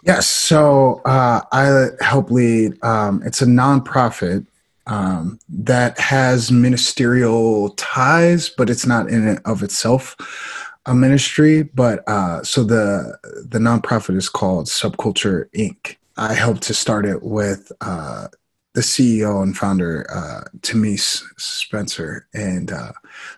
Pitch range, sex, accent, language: 100-125 Hz, male, American, English